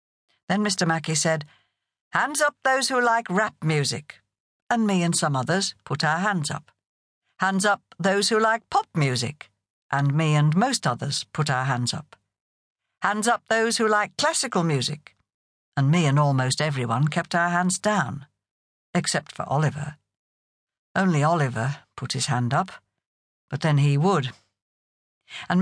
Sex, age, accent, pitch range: female, 60-79, British, 135-210 Hz